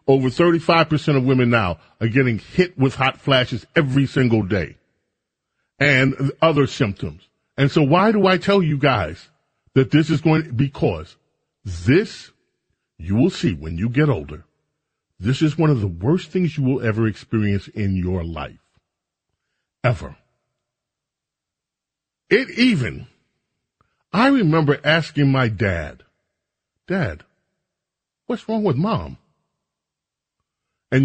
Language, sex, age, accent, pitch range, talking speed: English, male, 40-59, American, 110-155 Hz, 130 wpm